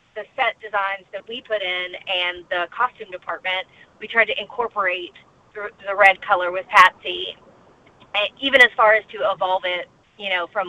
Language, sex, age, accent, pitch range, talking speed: English, female, 30-49, American, 185-225 Hz, 170 wpm